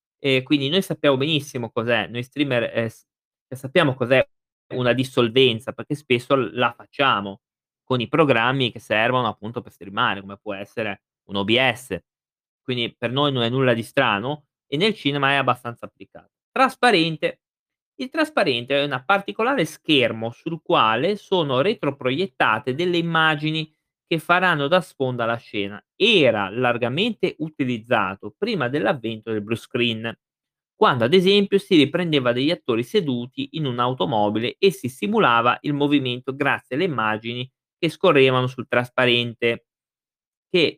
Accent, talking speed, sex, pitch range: native, 140 wpm, male, 120-160 Hz